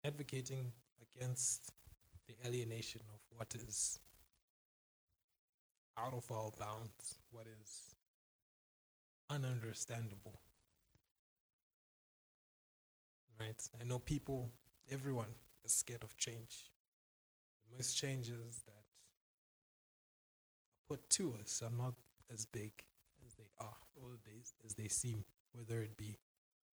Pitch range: 110-130 Hz